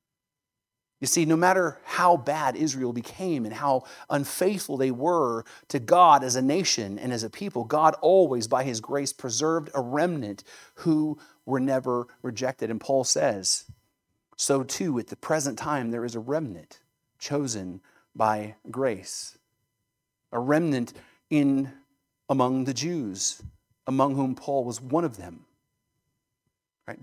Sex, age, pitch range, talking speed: male, 40-59, 115-140 Hz, 140 wpm